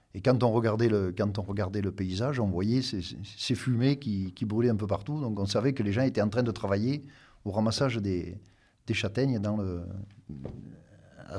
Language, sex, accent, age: French, male, French, 50-69